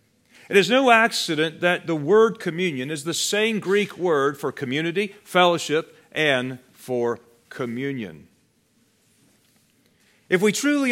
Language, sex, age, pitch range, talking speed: English, male, 40-59, 125-180 Hz, 120 wpm